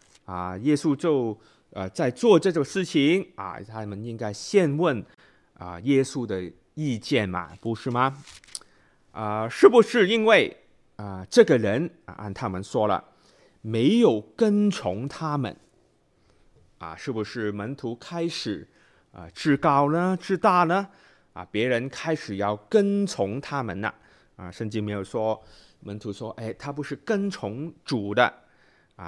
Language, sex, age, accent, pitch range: Chinese, male, 30-49, native, 105-165 Hz